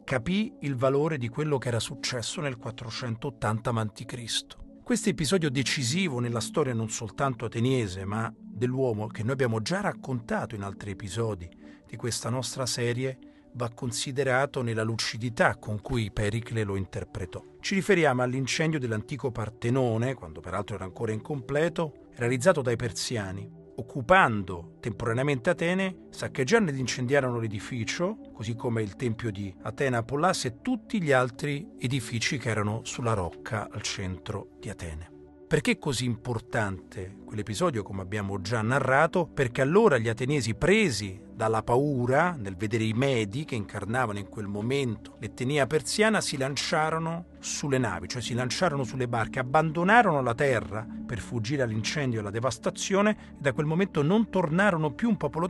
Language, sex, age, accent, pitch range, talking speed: Italian, male, 40-59, native, 110-150 Hz, 145 wpm